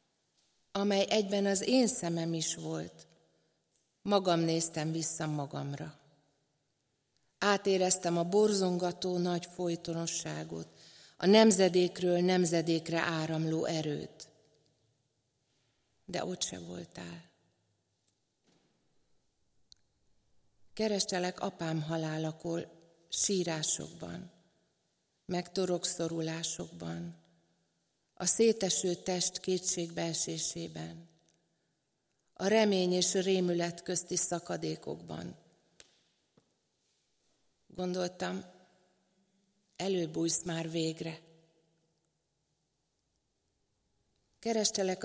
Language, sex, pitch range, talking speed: Hungarian, female, 155-185 Hz, 60 wpm